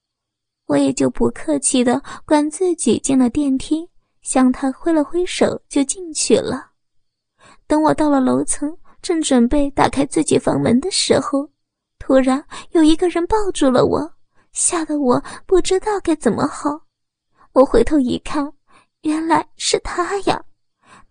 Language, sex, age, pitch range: Chinese, female, 20-39, 260-315 Hz